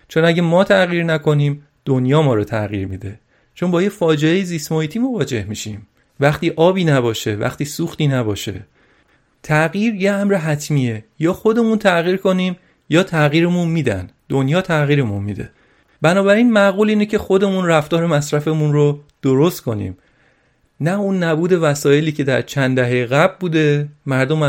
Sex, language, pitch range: male, Persian, 130-175 Hz